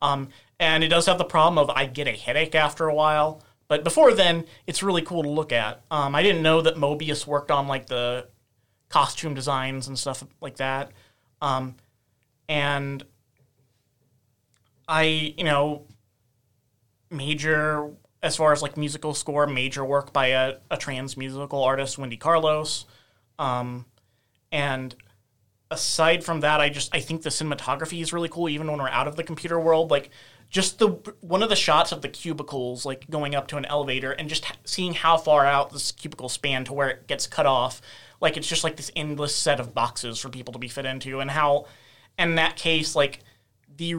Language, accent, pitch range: English, American, 125-155 Hz